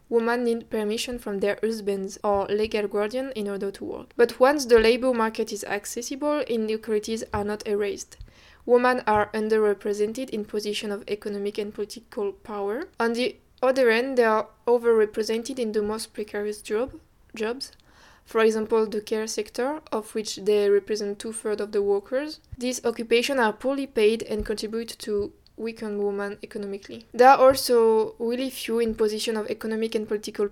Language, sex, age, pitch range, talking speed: Italian, female, 20-39, 210-235 Hz, 160 wpm